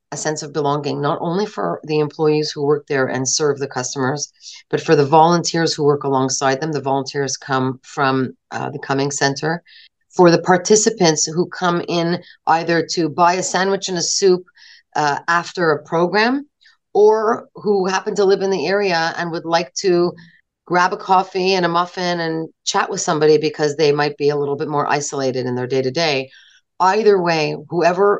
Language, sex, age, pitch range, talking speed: English, female, 40-59, 145-175 Hz, 185 wpm